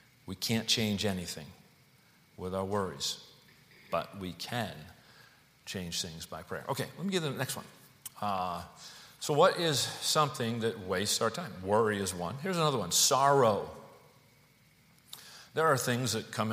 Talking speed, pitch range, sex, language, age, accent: 155 wpm, 95-120 Hz, male, English, 40-59, American